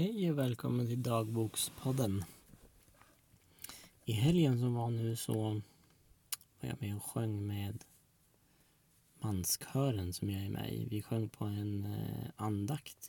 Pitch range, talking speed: 105-130 Hz, 130 wpm